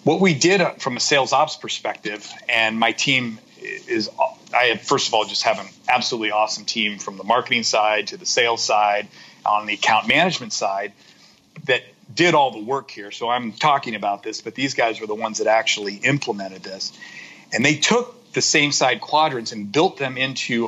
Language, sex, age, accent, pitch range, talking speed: English, male, 40-59, American, 115-160 Hz, 195 wpm